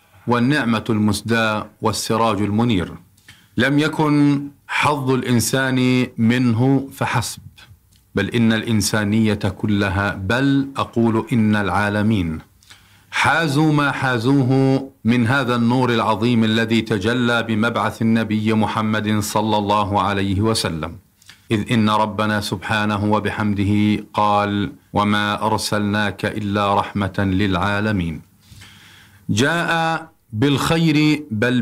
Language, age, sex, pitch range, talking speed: Arabic, 50-69, male, 105-125 Hz, 90 wpm